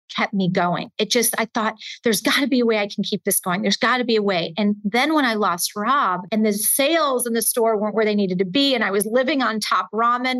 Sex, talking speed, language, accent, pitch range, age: female, 285 wpm, English, American, 215-280 Hz, 40-59